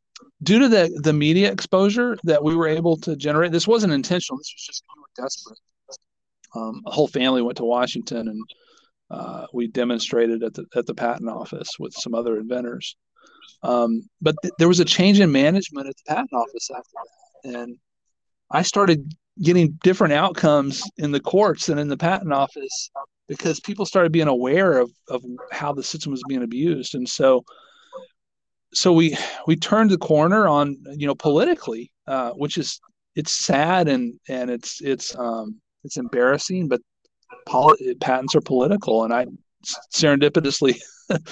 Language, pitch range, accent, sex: English, 130-185 Hz, American, male